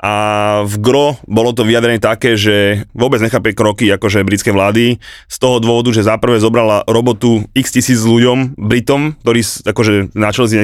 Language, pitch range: Slovak, 110-140 Hz